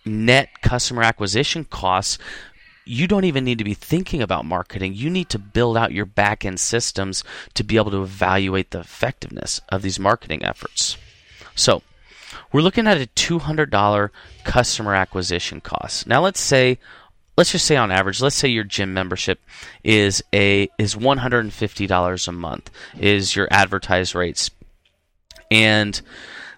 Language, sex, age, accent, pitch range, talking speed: English, male, 30-49, American, 95-125 Hz, 145 wpm